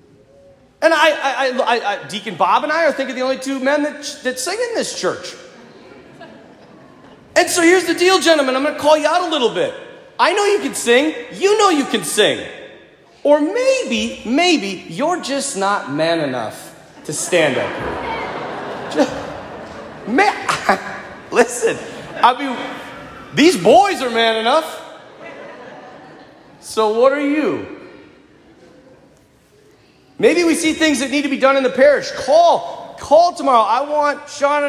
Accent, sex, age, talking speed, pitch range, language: American, male, 40-59, 155 wpm, 270-320 Hz, English